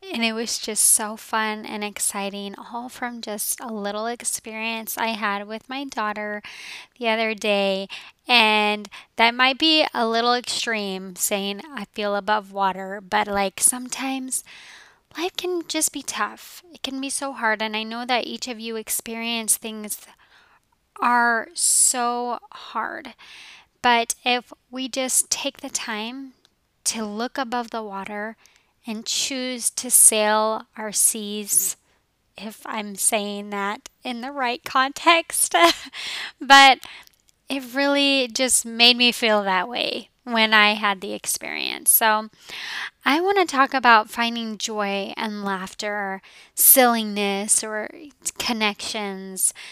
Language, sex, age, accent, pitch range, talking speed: English, female, 10-29, American, 210-250 Hz, 135 wpm